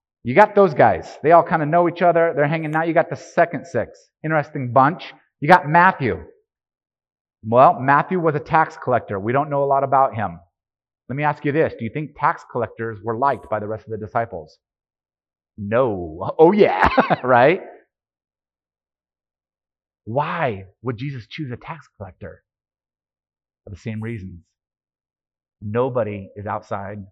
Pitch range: 95-145 Hz